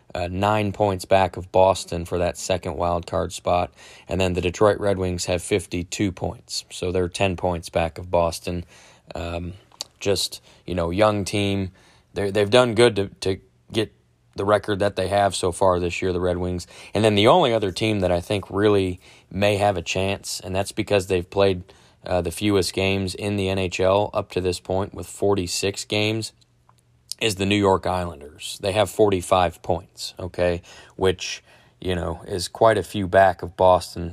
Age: 20-39